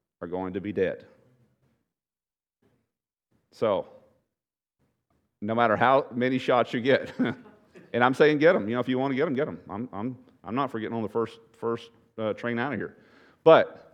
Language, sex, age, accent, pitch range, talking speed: English, male, 40-59, American, 110-160 Hz, 185 wpm